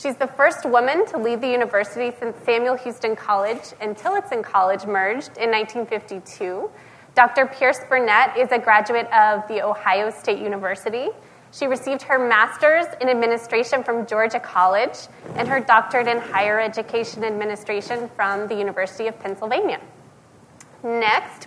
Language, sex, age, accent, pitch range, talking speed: English, female, 20-39, American, 210-255 Hz, 145 wpm